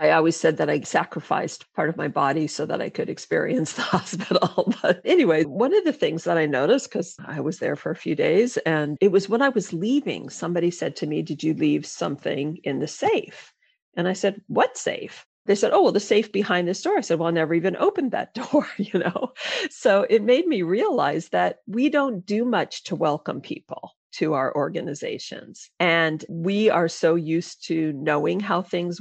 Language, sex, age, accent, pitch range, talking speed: English, female, 50-69, American, 160-240 Hz, 210 wpm